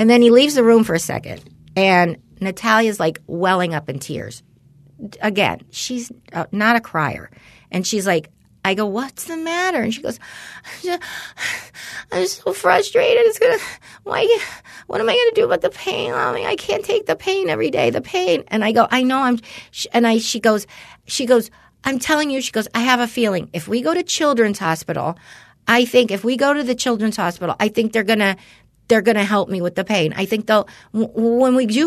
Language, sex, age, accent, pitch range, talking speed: English, female, 40-59, American, 185-245 Hz, 215 wpm